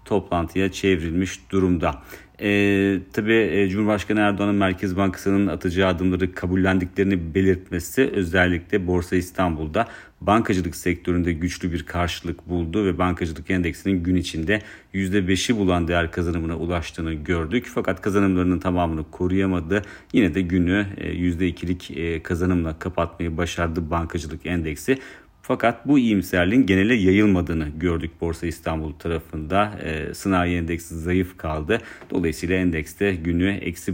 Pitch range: 85-95 Hz